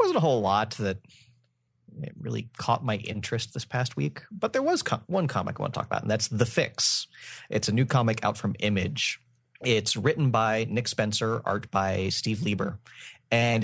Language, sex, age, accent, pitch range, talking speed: English, male, 30-49, American, 100-125 Hz, 190 wpm